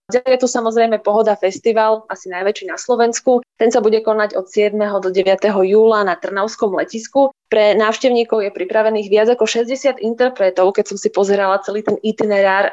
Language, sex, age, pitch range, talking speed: Slovak, female, 20-39, 185-220 Hz, 170 wpm